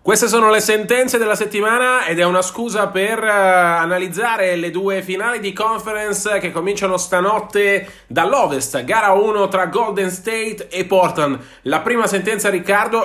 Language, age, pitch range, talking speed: Italian, 30-49, 160-205 Hz, 150 wpm